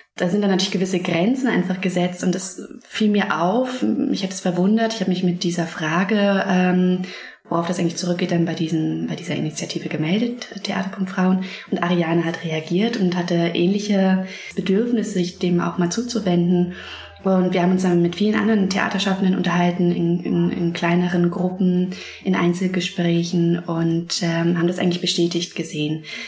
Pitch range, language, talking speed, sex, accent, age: 170-190 Hz, German, 165 wpm, female, German, 20-39